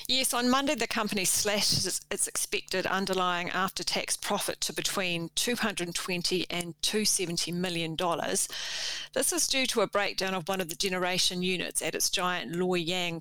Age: 40-59